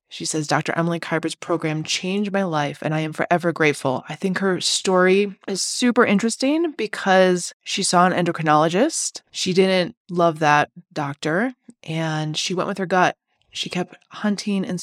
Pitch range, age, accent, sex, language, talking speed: 155-205 Hz, 20-39, American, female, English, 165 wpm